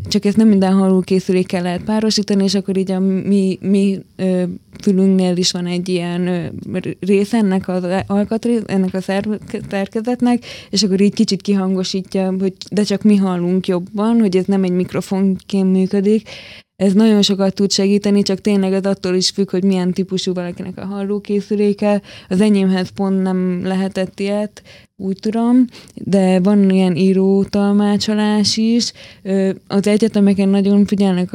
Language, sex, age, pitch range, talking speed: Hungarian, female, 20-39, 185-205 Hz, 145 wpm